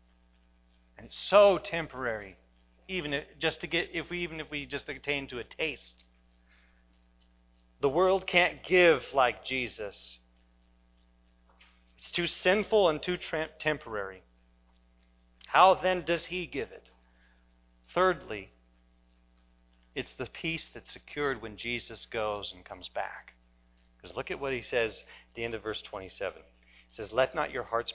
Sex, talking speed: male, 140 wpm